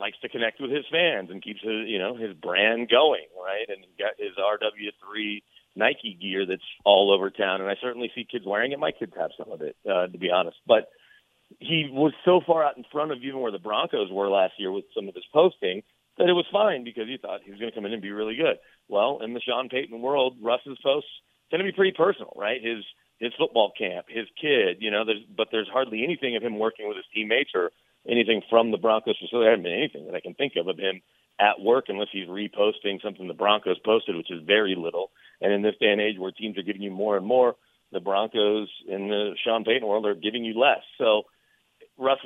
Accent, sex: American, male